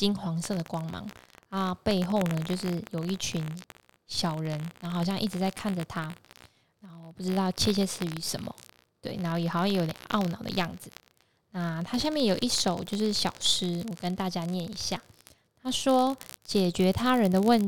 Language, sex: Chinese, female